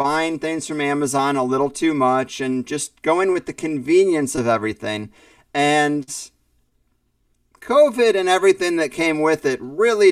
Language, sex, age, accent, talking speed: English, male, 30-49, American, 150 wpm